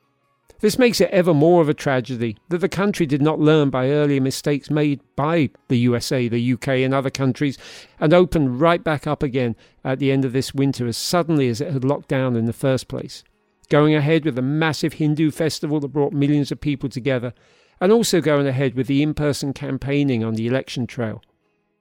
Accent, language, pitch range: British, English, 125-155 Hz